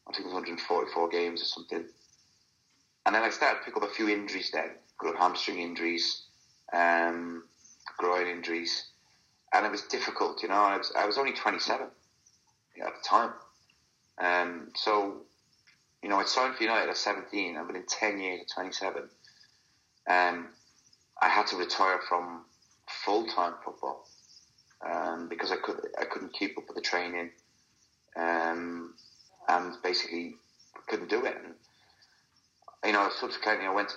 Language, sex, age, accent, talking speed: English, male, 30-49, British, 165 wpm